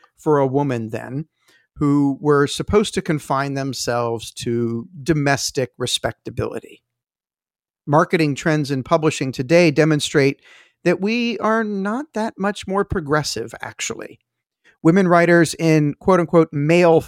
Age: 50-69